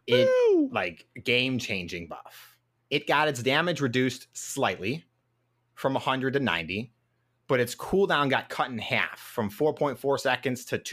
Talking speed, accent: 145 wpm, American